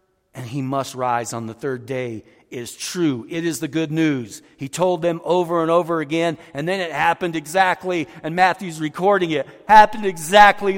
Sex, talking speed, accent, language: male, 185 wpm, American, English